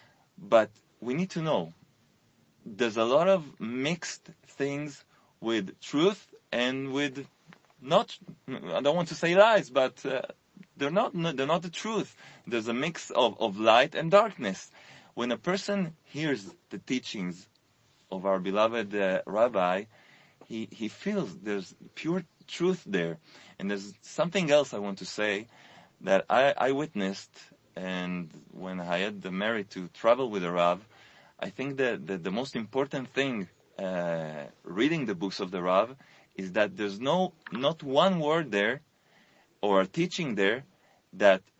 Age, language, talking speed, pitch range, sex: 30-49, English, 155 wpm, 105-170 Hz, male